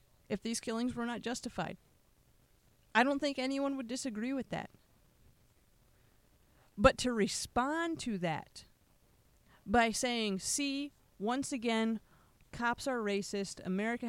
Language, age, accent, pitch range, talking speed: English, 30-49, American, 205-270 Hz, 120 wpm